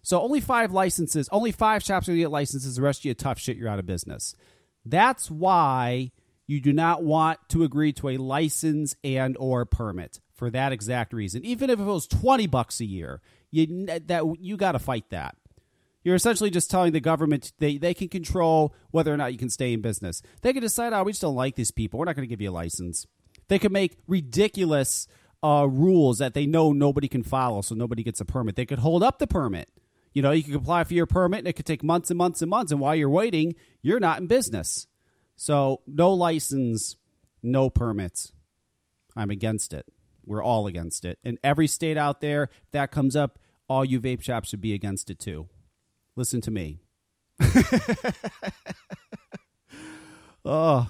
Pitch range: 110-165 Hz